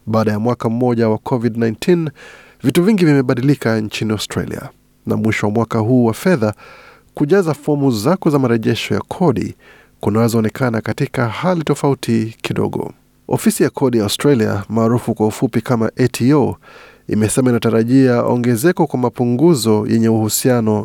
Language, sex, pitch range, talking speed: Swahili, male, 110-140 Hz, 135 wpm